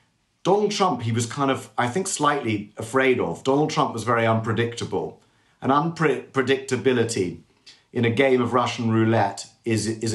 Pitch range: 105-125 Hz